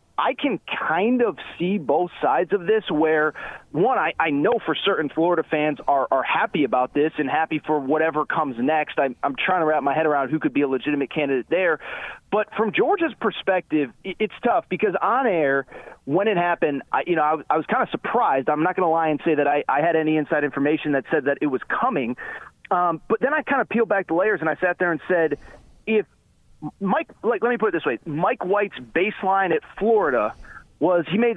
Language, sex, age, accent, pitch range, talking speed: English, male, 30-49, American, 150-210 Hz, 225 wpm